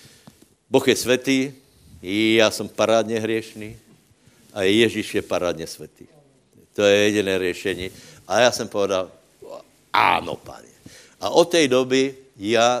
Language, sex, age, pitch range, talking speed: Slovak, male, 70-89, 110-150 Hz, 125 wpm